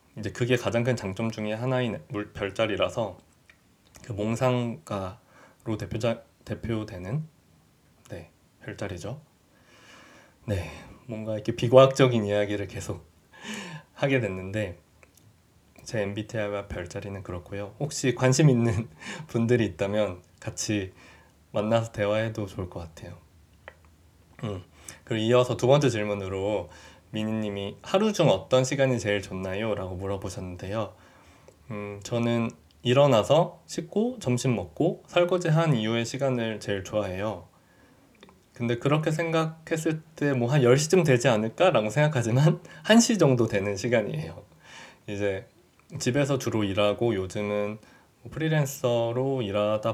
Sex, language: male, Korean